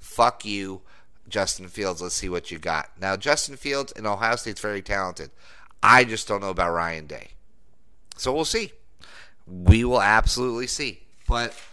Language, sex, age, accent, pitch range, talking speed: English, male, 30-49, American, 105-145 Hz, 170 wpm